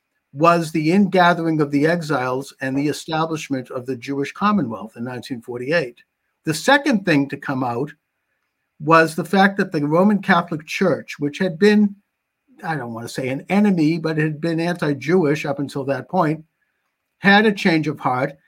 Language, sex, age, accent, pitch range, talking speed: English, male, 50-69, American, 140-190 Hz, 170 wpm